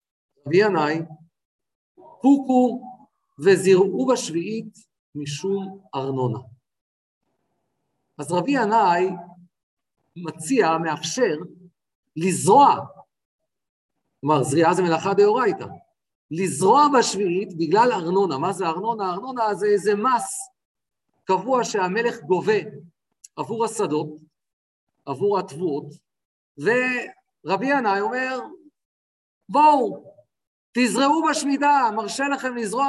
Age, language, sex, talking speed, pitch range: 50-69, Hebrew, male, 80 wpm, 165-245 Hz